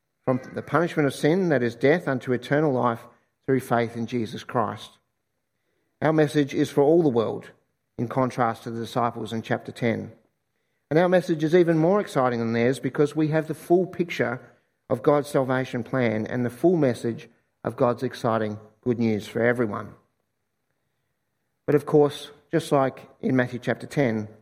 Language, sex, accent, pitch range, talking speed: English, male, Australian, 115-145 Hz, 170 wpm